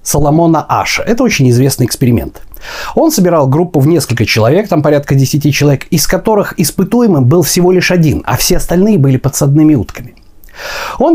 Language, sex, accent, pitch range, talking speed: Russian, male, native, 120-175 Hz, 160 wpm